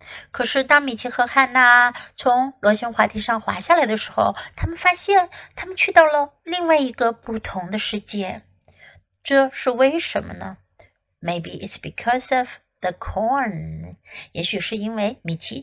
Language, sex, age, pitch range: Chinese, female, 60-79, 200-265 Hz